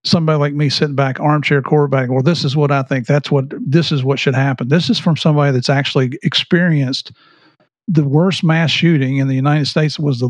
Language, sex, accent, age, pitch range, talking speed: English, male, American, 50-69, 140-165 Hz, 215 wpm